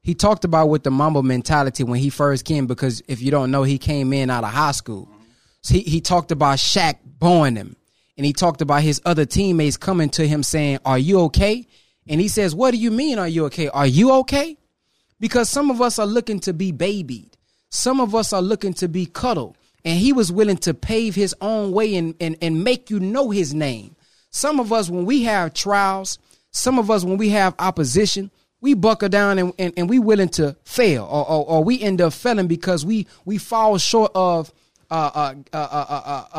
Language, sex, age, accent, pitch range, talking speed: English, male, 20-39, American, 155-205 Hz, 220 wpm